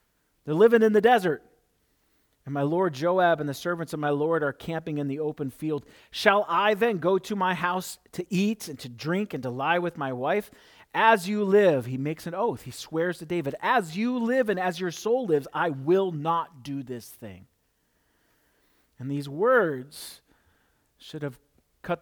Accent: American